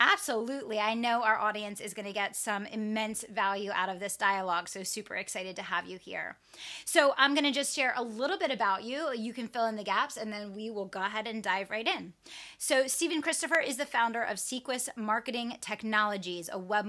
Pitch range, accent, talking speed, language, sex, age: 200-250 Hz, American, 220 wpm, English, female, 20-39